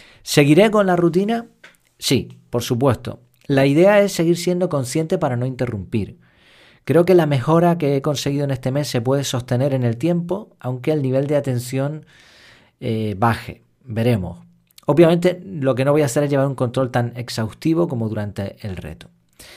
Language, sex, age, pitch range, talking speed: Spanish, male, 40-59, 115-145 Hz, 175 wpm